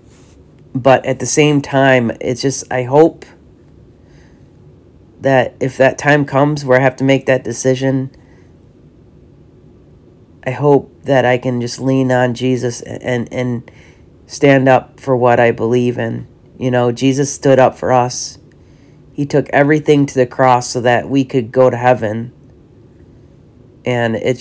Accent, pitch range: American, 125-140 Hz